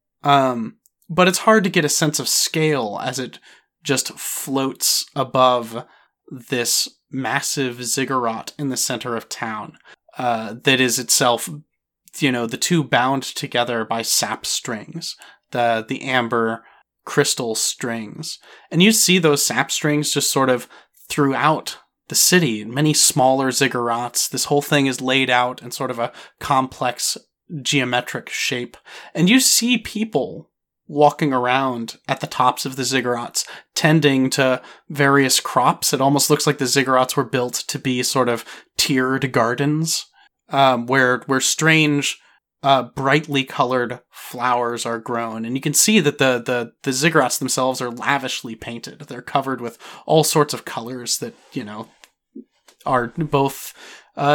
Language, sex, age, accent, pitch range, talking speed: English, male, 30-49, American, 125-150 Hz, 150 wpm